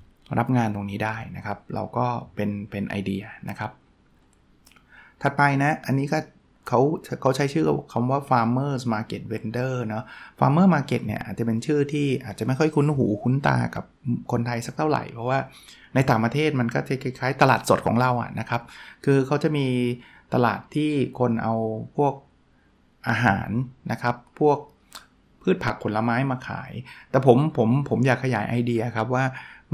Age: 20-39